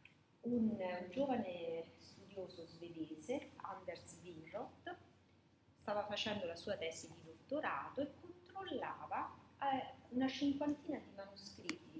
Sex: female